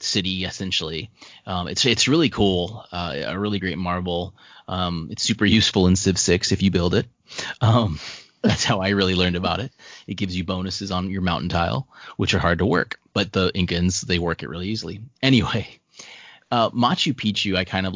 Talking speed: 195 wpm